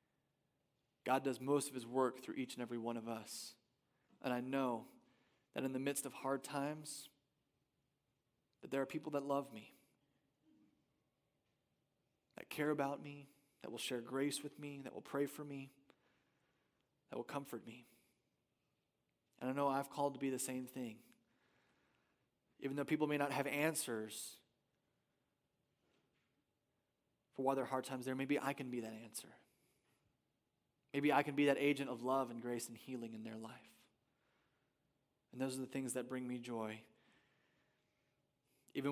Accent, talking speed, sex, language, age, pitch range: American, 160 wpm, male, English, 20-39, 120-140 Hz